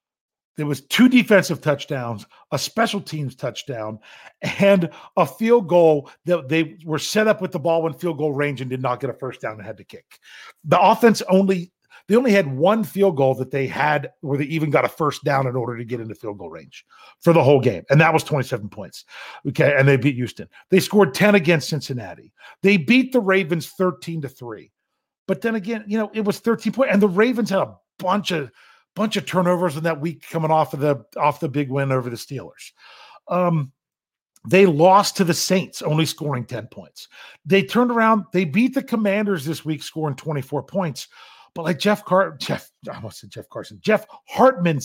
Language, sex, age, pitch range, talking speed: English, male, 40-59, 140-200 Hz, 210 wpm